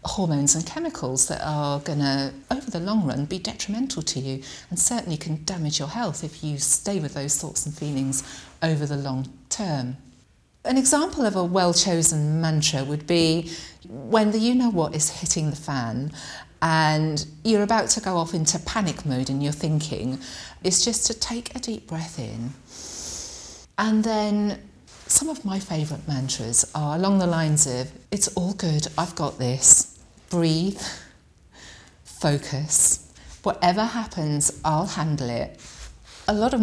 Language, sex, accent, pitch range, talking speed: English, female, British, 145-190 Hz, 160 wpm